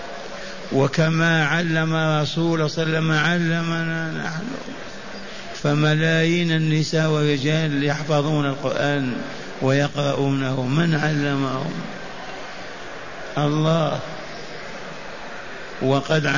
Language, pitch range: Arabic, 140-160 Hz